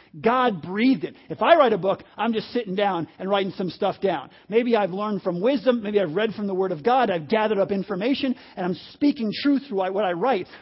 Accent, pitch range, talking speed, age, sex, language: American, 190-230 Hz, 235 wpm, 50-69, male, English